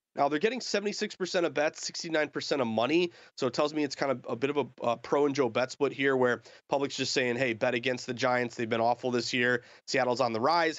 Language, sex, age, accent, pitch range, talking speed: English, male, 30-49, American, 125-155 Hz, 250 wpm